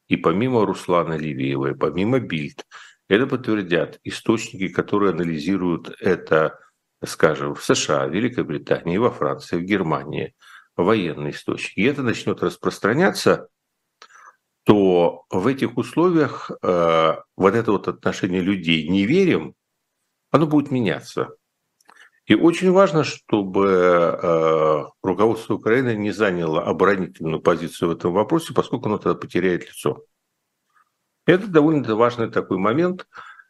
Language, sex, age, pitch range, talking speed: Russian, male, 50-69, 90-130 Hz, 115 wpm